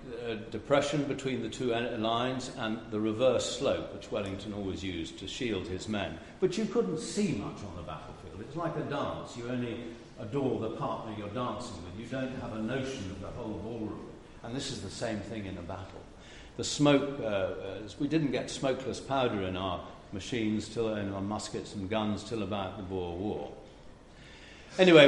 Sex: male